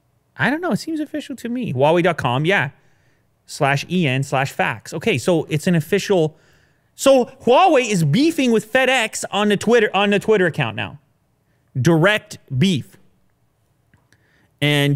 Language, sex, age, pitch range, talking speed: English, male, 30-49, 125-160 Hz, 145 wpm